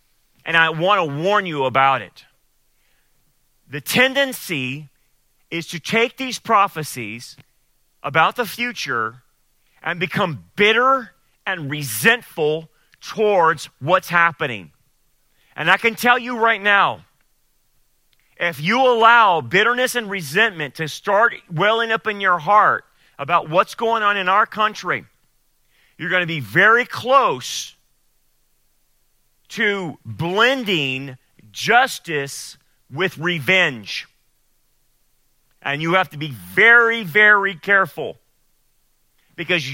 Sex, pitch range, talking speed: male, 150-210 Hz, 110 wpm